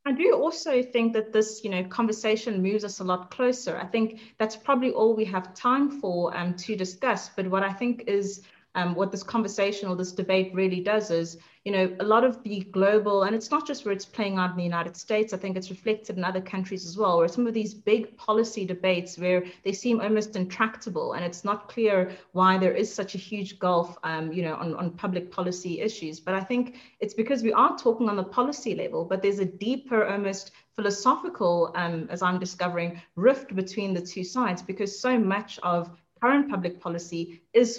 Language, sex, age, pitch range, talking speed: English, female, 30-49, 175-220 Hz, 215 wpm